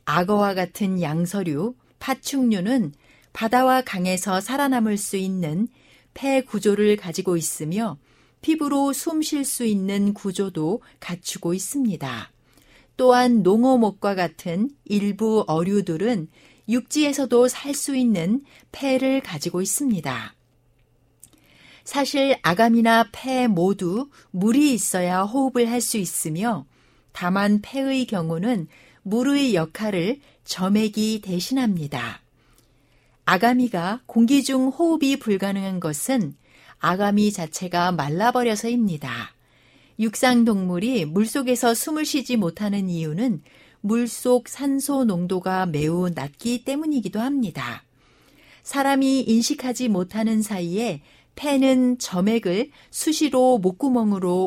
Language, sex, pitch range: Korean, female, 175-250 Hz